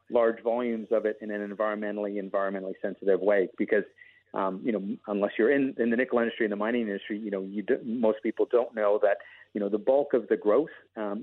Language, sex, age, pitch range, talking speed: English, male, 40-59, 100-120 Hz, 215 wpm